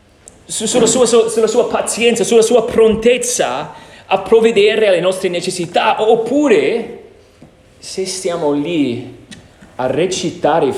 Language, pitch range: Italian, 135-225 Hz